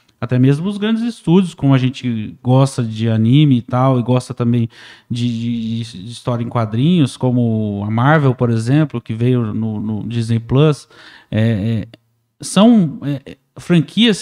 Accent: Brazilian